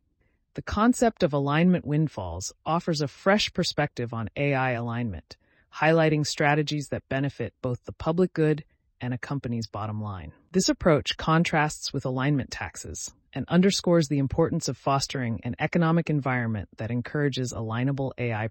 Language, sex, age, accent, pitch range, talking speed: English, female, 30-49, American, 115-155 Hz, 145 wpm